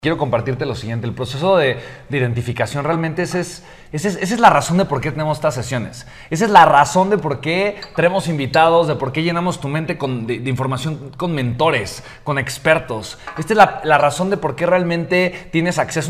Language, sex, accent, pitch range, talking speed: Spanish, male, Mexican, 135-175 Hz, 200 wpm